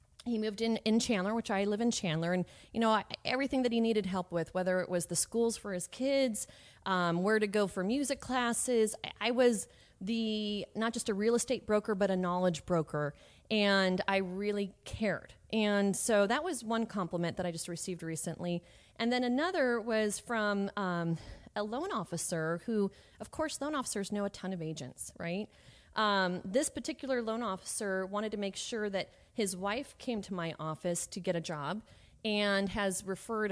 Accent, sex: American, female